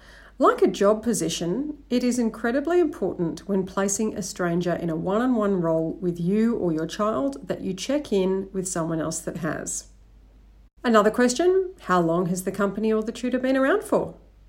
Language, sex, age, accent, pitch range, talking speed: English, female, 40-59, Australian, 175-240 Hz, 180 wpm